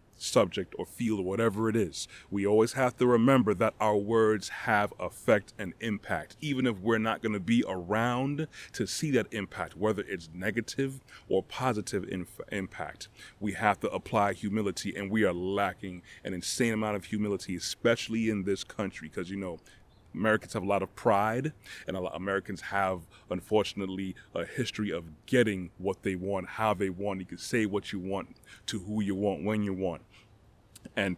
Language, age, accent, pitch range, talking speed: English, 30-49, American, 95-115 Hz, 180 wpm